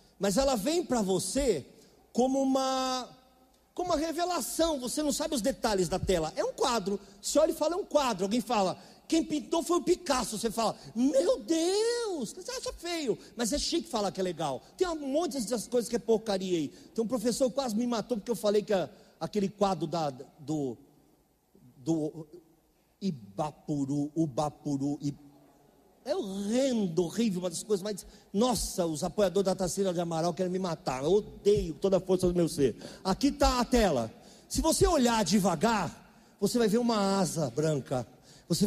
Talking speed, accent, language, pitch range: 175 wpm, Brazilian, Portuguese, 180-250 Hz